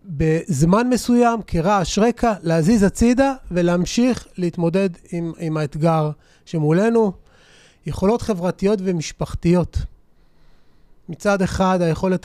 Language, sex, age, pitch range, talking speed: Hebrew, male, 30-49, 165-215 Hz, 90 wpm